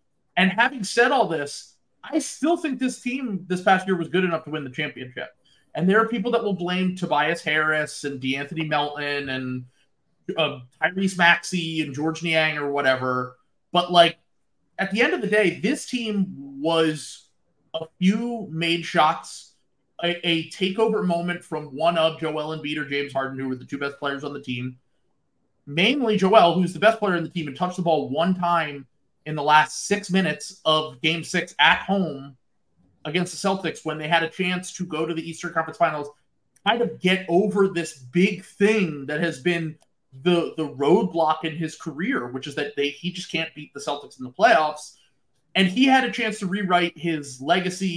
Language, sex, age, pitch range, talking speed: English, male, 30-49, 150-190 Hz, 195 wpm